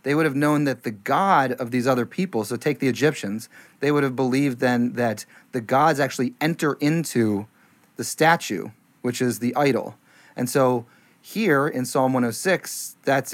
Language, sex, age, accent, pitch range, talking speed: English, male, 30-49, American, 130-165 Hz, 175 wpm